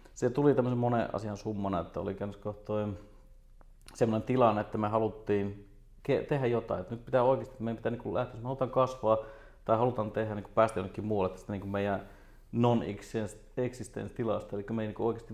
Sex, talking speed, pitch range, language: male, 170 wpm, 100-115 Hz, Finnish